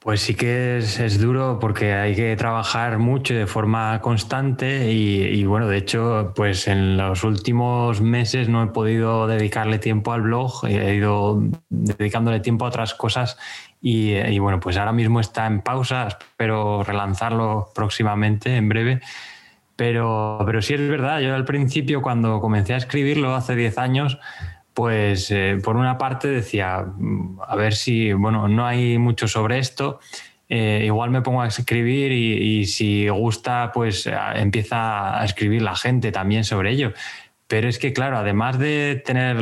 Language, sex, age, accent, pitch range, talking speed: Spanish, male, 20-39, Spanish, 105-120 Hz, 165 wpm